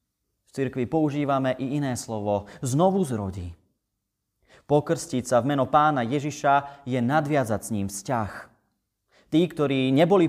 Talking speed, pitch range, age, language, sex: 120 wpm, 110-150 Hz, 30-49, Slovak, male